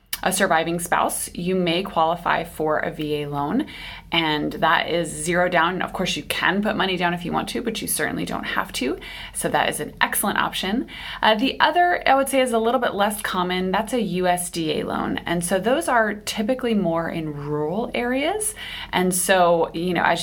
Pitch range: 160-185 Hz